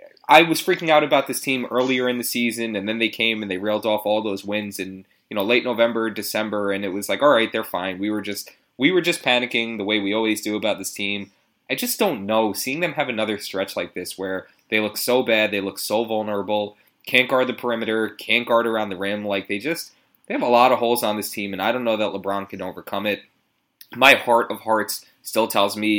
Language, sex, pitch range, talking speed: English, male, 100-120 Hz, 250 wpm